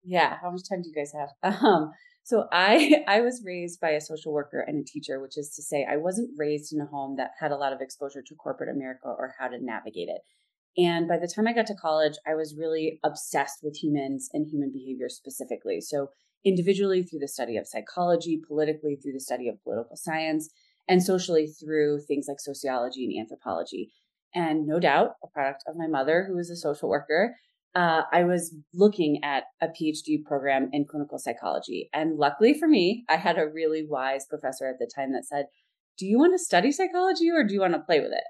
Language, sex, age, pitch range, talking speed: English, female, 30-49, 150-185 Hz, 215 wpm